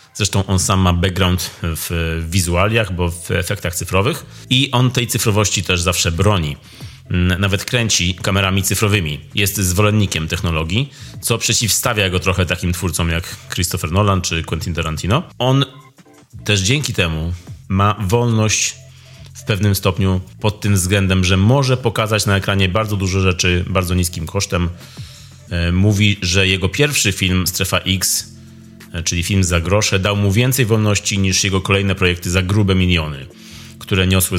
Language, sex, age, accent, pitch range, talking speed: Polish, male, 30-49, native, 90-115 Hz, 145 wpm